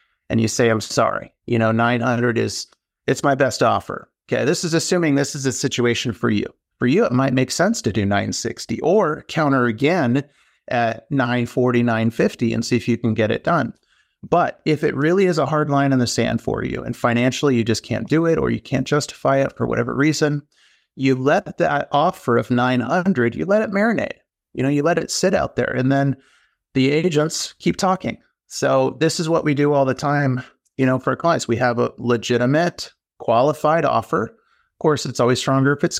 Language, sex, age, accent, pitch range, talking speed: English, male, 30-49, American, 120-160 Hz, 205 wpm